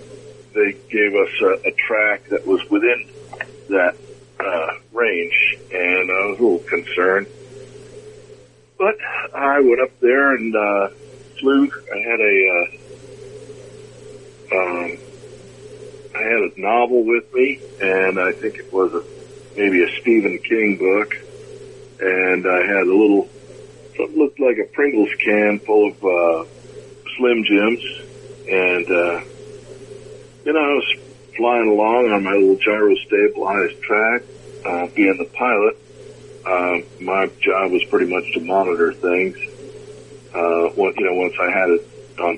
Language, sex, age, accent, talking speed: English, male, 50-69, American, 140 wpm